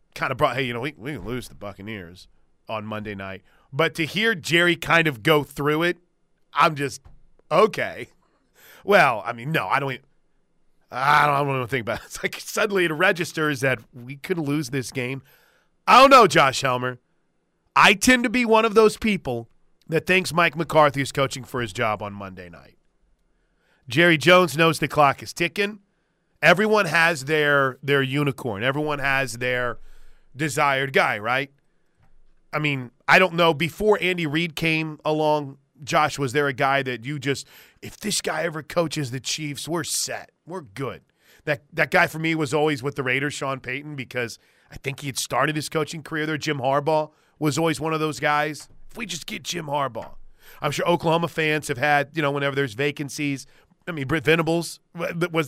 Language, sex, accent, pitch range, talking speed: English, male, American, 135-165 Hz, 190 wpm